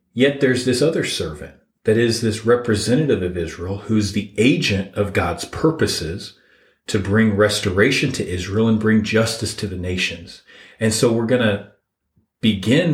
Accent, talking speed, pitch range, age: American, 160 wpm, 100-125 Hz, 40-59